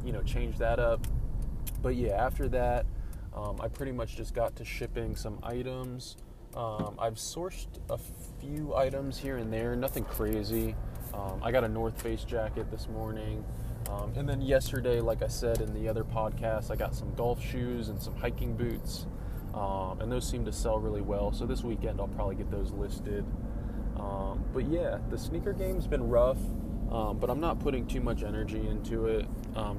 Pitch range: 105-120 Hz